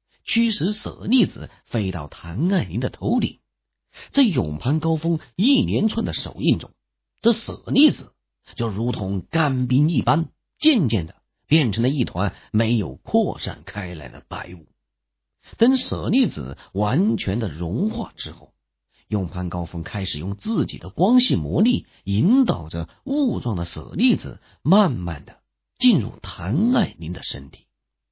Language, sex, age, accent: English, male, 50-69, Chinese